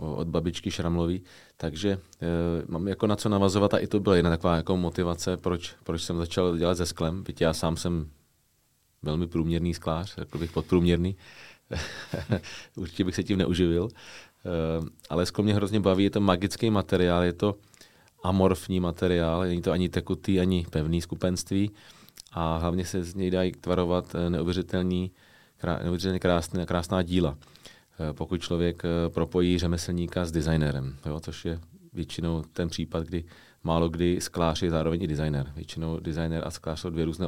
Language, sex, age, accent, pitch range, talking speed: Czech, male, 30-49, native, 85-95 Hz, 155 wpm